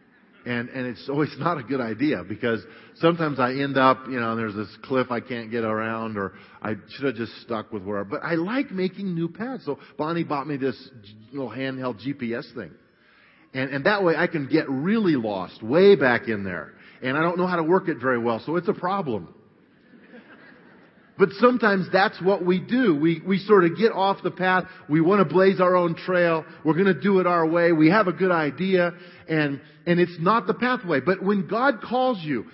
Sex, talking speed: male, 215 wpm